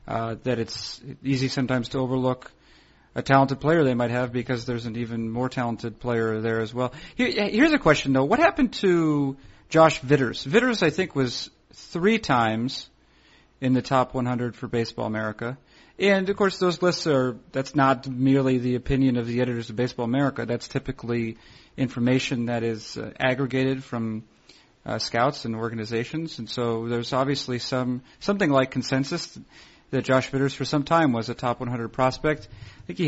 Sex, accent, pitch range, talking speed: male, American, 120-140 Hz, 180 wpm